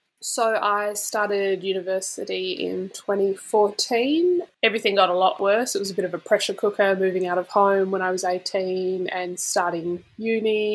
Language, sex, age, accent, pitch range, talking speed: English, female, 10-29, Australian, 185-220 Hz, 165 wpm